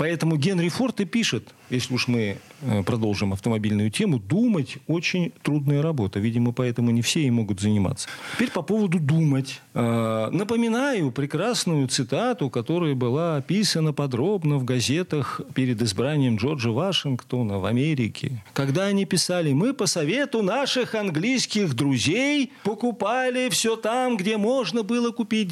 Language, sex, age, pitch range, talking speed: Russian, male, 40-59, 125-195 Hz, 130 wpm